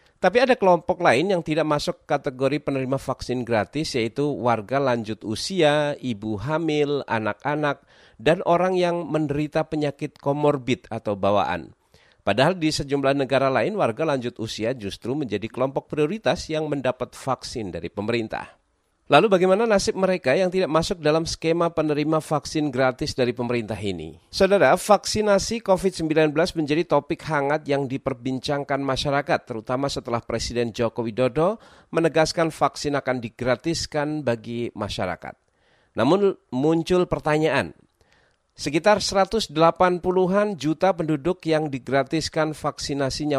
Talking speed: 120 wpm